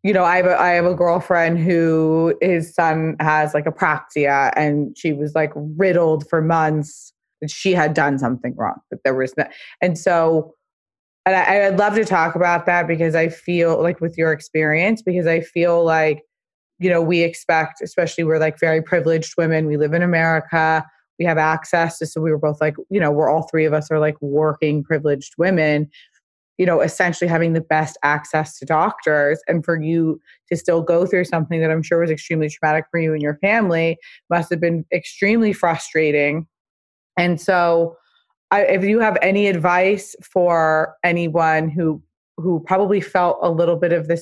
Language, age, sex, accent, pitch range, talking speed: English, 20-39, female, American, 155-175 Hz, 190 wpm